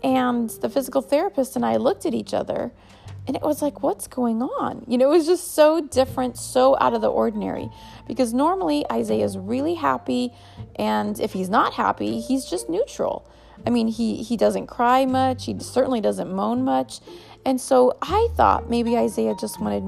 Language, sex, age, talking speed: English, female, 30-49, 185 wpm